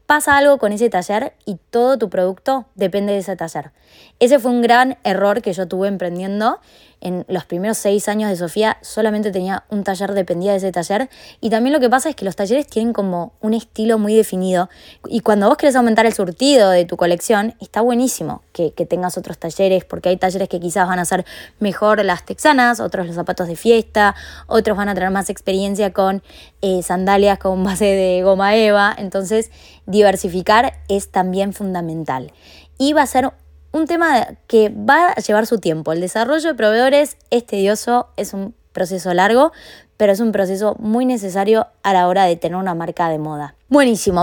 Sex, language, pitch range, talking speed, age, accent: female, Spanish, 185-235 Hz, 195 wpm, 20-39, Argentinian